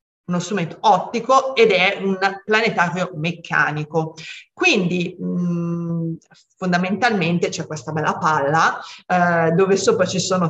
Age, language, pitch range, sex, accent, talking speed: 30-49, Italian, 170-205 Hz, female, native, 115 wpm